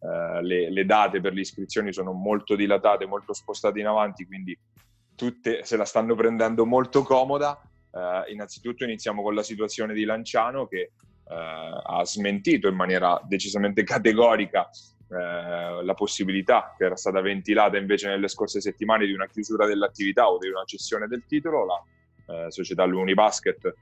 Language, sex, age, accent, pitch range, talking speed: Italian, male, 20-39, native, 95-115 Hz, 160 wpm